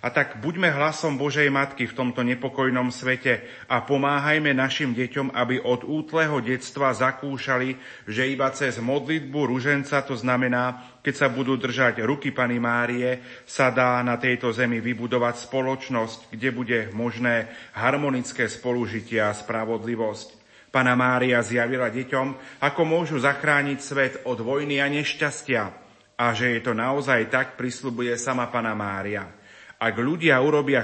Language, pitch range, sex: Slovak, 110-135 Hz, male